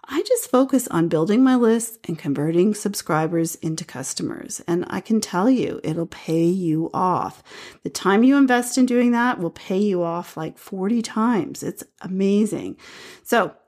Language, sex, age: English, female, 40-59